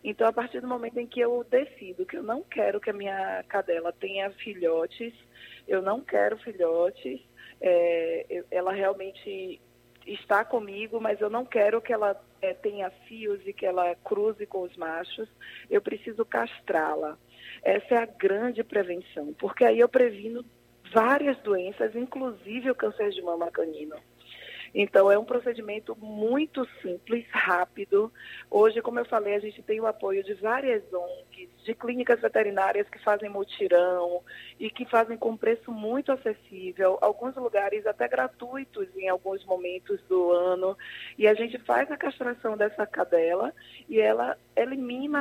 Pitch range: 195-245 Hz